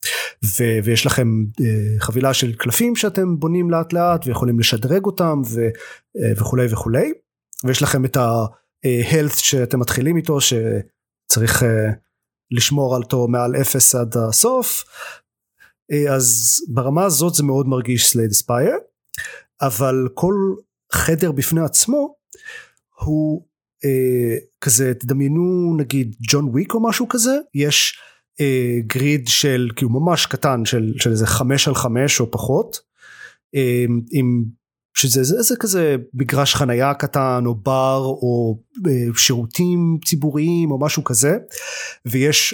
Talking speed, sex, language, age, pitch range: 125 wpm, male, Hebrew, 30-49, 120-165 Hz